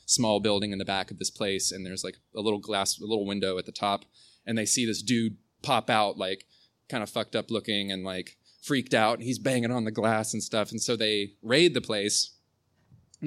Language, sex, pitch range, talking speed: English, male, 95-120 Hz, 235 wpm